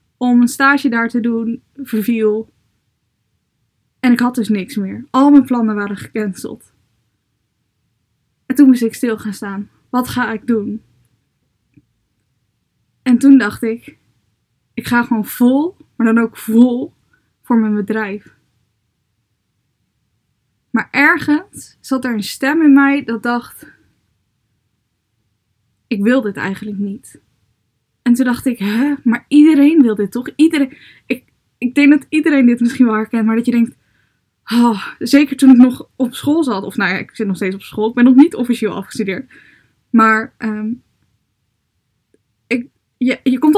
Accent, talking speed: Dutch, 150 wpm